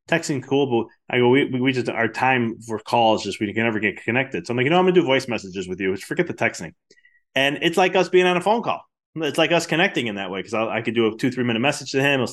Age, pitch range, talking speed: 20-39, 105-140 Hz, 305 wpm